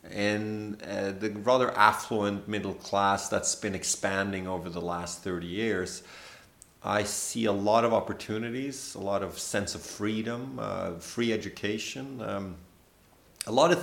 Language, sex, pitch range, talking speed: English, male, 100-125 Hz, 150 wpm